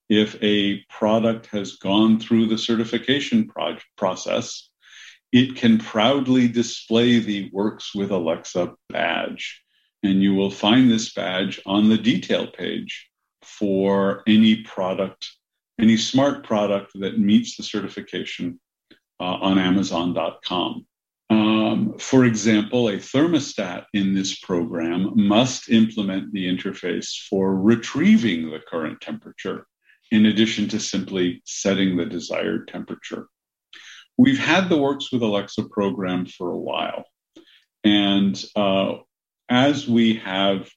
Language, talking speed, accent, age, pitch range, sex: English, 120 wpm, American, 50-69, 95-115 Hz, male